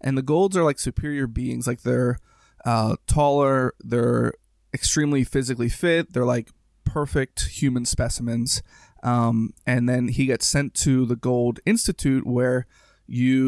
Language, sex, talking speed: English, male, 140 wpm